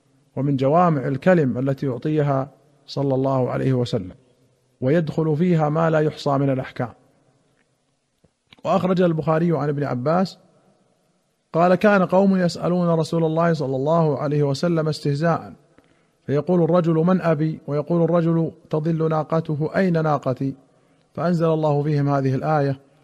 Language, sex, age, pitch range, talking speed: Arabic, male, 40-59, 140-165 Hz, 120 wpm